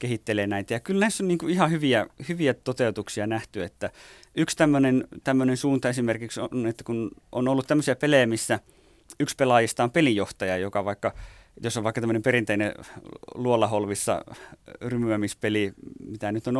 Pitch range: 105-130 Hz